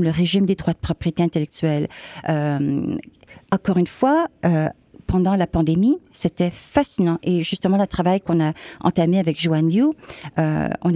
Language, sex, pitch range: French, female, 160-215 Hz